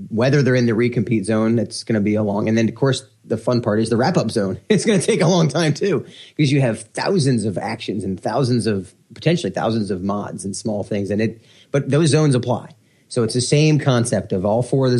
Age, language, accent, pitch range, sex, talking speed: 30-49, English, American, 105-130 Hz, male, 255 wpm